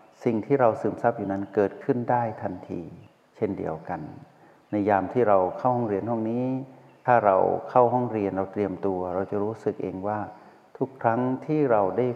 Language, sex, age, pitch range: Thai, male, 60-79, 100-120 Hz